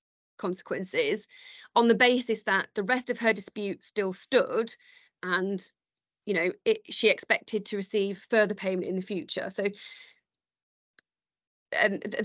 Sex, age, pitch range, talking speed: female, 20-39, 190-230 Hz, 130 wpm